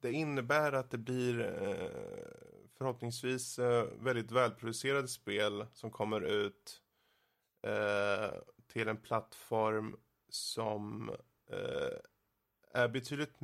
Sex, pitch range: male, 110-140 Hz